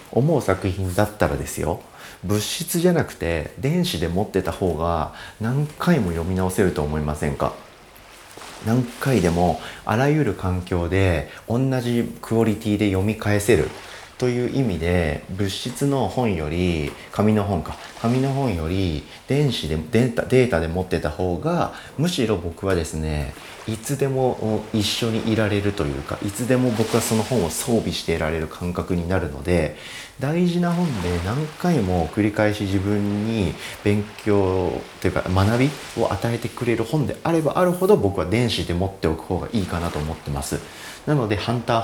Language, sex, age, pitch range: Japanese, male, 40-59, 85-120 Hz